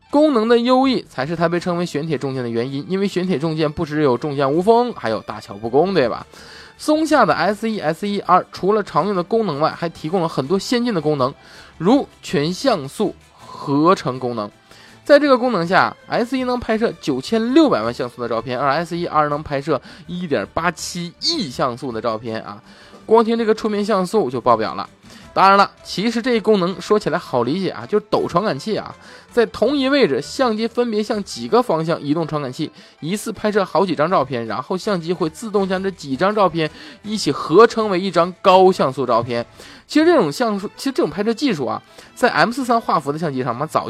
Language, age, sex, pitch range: Chinese, 20-39, male, 145-220 Hz